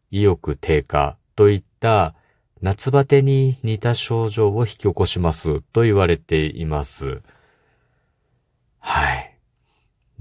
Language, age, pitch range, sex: Japanese, 50-69, 85-130 Hz, male